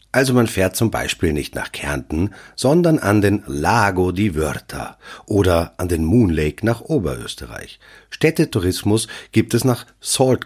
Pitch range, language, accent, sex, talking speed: 85-120 Hz, German, German, male, 150 wpm